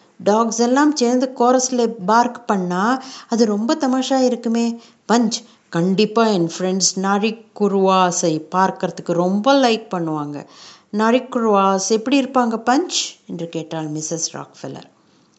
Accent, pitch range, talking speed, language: native, 210-260 Hz, 110 wpm, Tamil